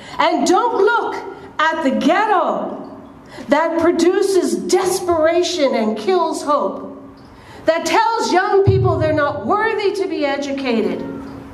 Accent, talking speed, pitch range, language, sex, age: American, 115 wpm, 230-360 Hz, English, female, 50-69